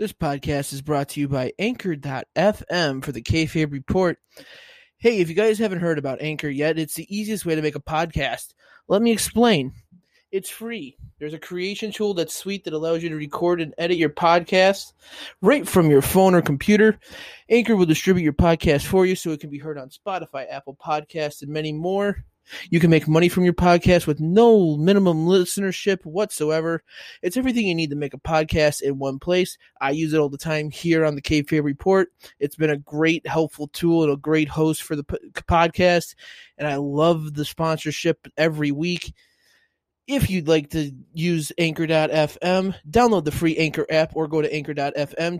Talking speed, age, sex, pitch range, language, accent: 190 wpm, 20-39, male, 150-185 Hz, English, American